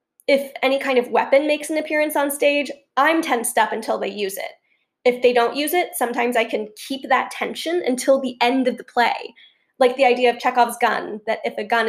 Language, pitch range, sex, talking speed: English, 235-295 Hz, female, 220 wpm